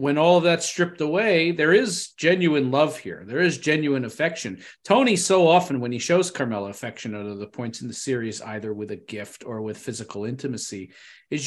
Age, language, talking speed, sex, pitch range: 40-59, English, 205 wpm, male, 125-165 Hz